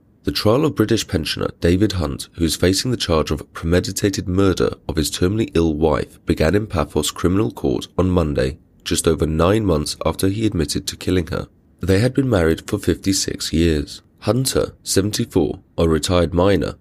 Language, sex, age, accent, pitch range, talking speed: English, male, 30-49, British, 80-100 Hz, 175 wpm